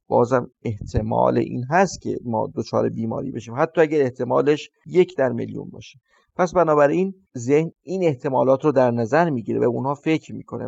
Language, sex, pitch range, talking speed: Persian, male, 125-165 Hz, 170 wpm